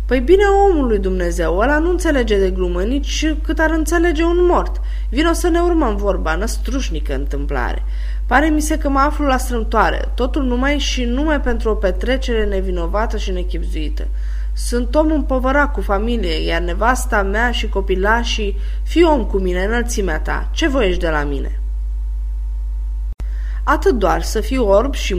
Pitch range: 155-255 Hz